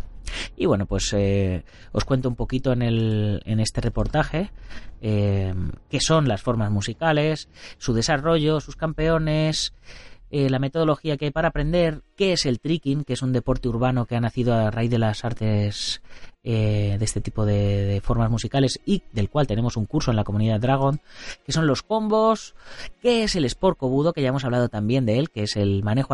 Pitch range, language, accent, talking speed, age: 110-160 Hz, Spanish, Spanish, 195 wpm, 30-49